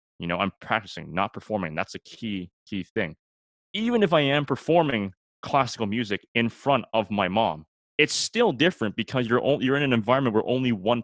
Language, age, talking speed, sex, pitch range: English, 20-39, 190 wpm, male, 95-130 Hz